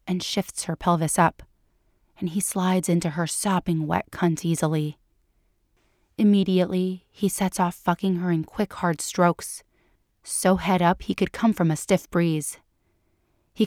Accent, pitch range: American, 165-185 Hz